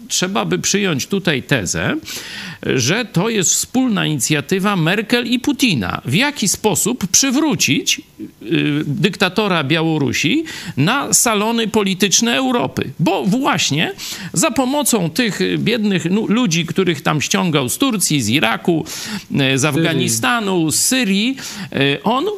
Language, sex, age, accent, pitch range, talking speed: Polish, male, 50-69, native, 145-230 Hz, 115 wpm